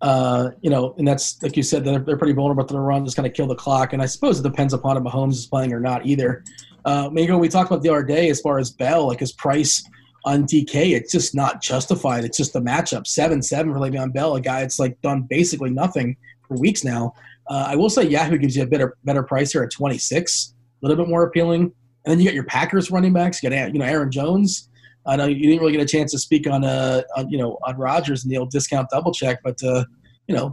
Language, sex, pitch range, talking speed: English, male, 130-160 Hz, 270 wpm